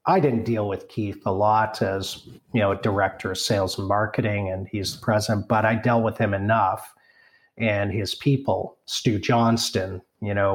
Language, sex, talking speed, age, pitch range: English, male, 180 wpm, 40-59, 100-125 Hz